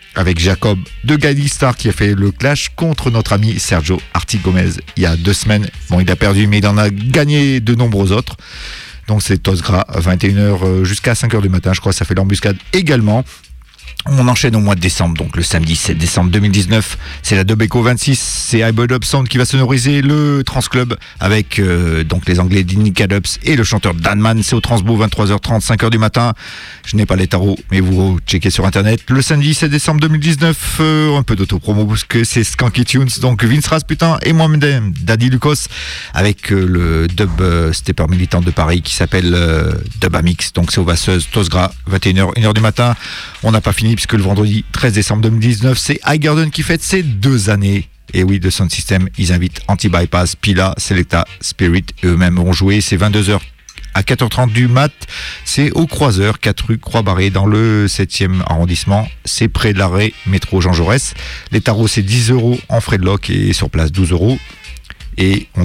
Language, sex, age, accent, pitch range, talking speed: English, male, 50-69, French, 90-120 Hz, 195 wpm